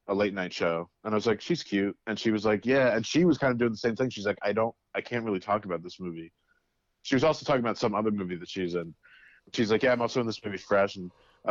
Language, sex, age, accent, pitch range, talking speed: English, male, 30-49, American, 95-115 Hz, 295 wpm